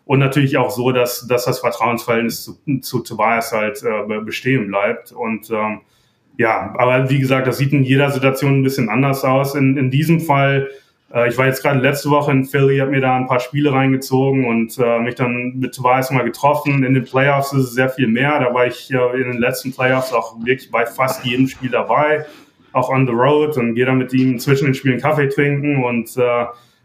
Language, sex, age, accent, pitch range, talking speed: German, male, 20-39, German, 120-140 Hz, 215 wpm